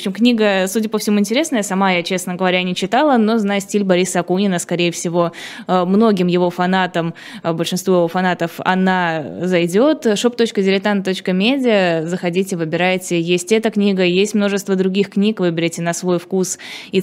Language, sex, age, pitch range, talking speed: Russian, female, 20-39, 180-210 Hz, 150 wpm